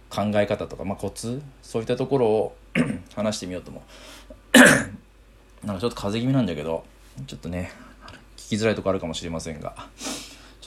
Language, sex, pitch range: Japanese, male, 90-125 Hz